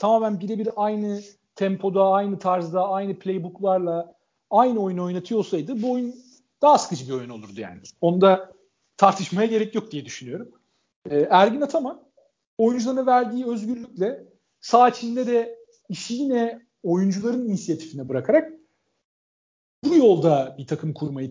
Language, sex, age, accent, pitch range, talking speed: Turkish, male, 50-69, native, 165-220 Hz, 120 wpm